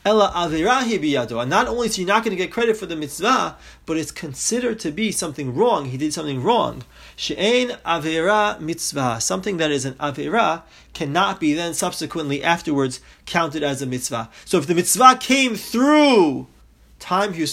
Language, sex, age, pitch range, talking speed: English, male, 30-49, 150-205 Hz, 170 wpm